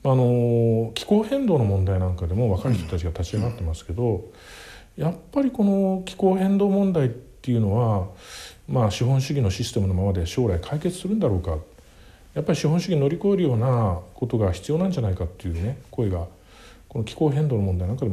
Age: 50-69